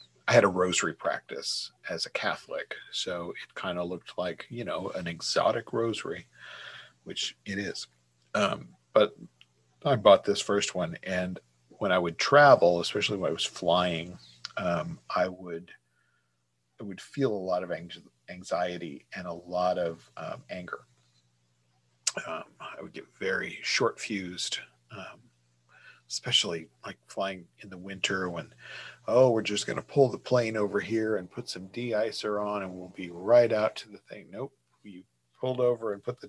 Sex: male